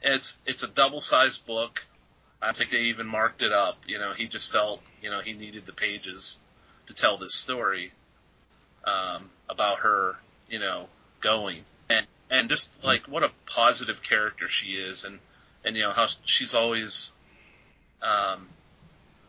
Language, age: English, 30-49